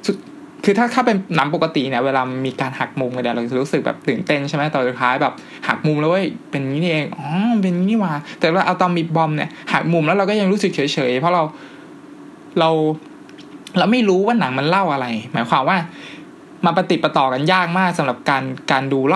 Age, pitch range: 20-39, 140-190 Hz